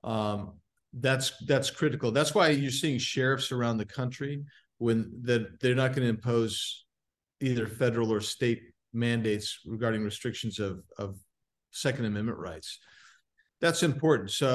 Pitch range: 110-135 Hz